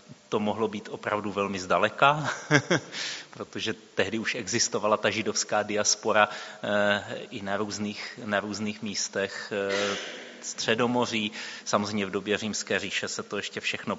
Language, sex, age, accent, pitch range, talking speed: Czech, male, 30-49, native, 105-115 Hz, 120 wpm